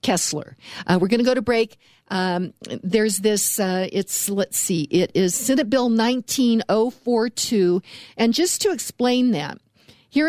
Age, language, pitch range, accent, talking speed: 50-69, English, 185-230 Hz, American, 150 wpm